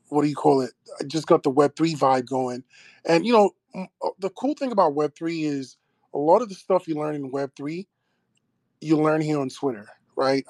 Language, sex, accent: English, male, American